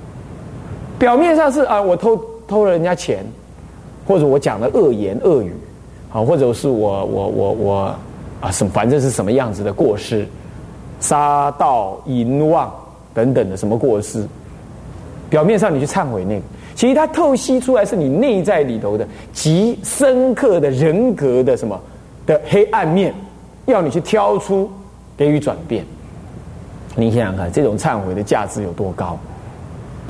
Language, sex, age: Chinese, male, 30-49